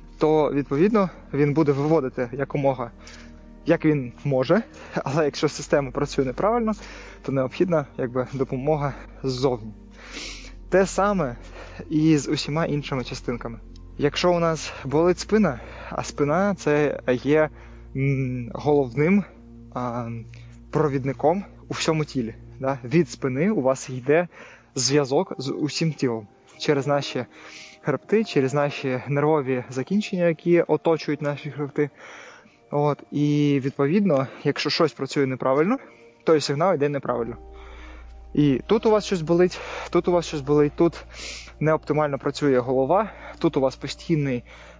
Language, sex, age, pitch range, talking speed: Ukrainian, male, 20-39, 130-160 Hz, 120 wpm